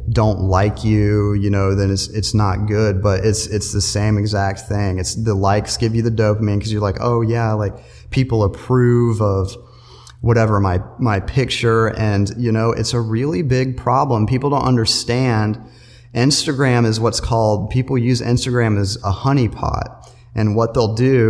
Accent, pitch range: American, 105-125 Hz